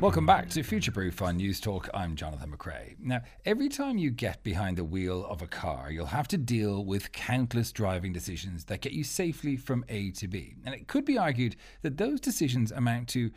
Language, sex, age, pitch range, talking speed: English, male, 40-59, 95-130 Hz, 215 wpm